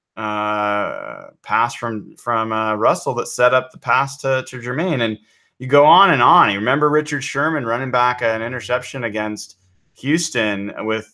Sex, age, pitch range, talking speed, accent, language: male, 20-39, 105-130 Hz, 165 wpm, American, English